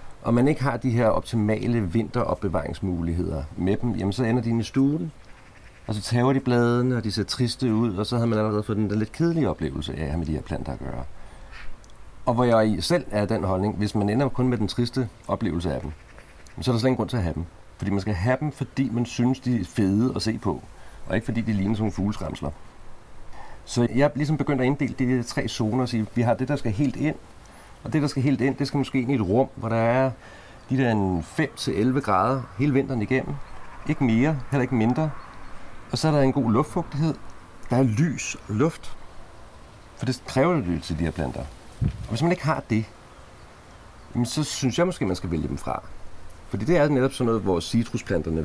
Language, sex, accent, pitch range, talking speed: Danish, male, native, 95-130 Hz, 230 wpm